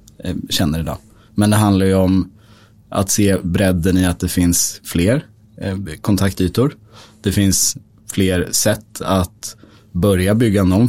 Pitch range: 95-110 Hz